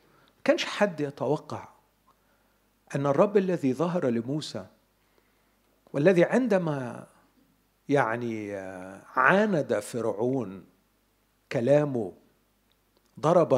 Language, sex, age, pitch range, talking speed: Arabic, male, 50-69, 120-185 Hz, 70 wpm